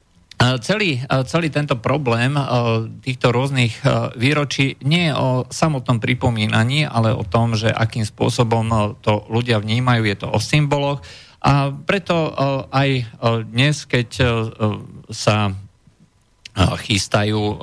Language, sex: Slovak, male